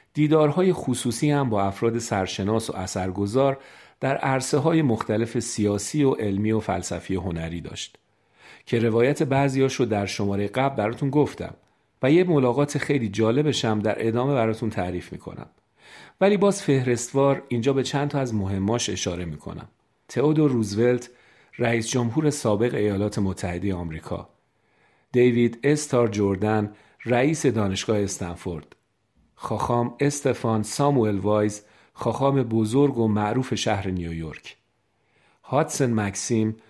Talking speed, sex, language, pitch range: 125 wpm, male, Persian, 105-125 Hz